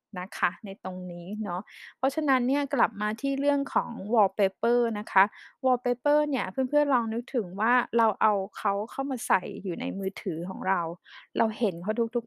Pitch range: 195-250 Hz